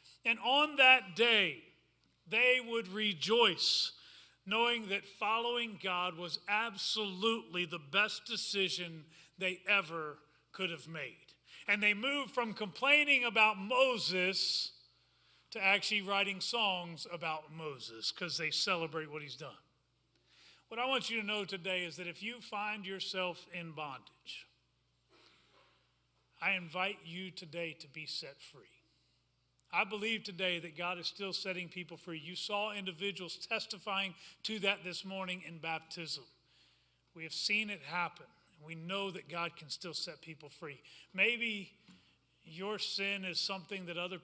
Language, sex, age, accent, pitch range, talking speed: English, male, 40-59, American, 160-200 Hz, 140 wpm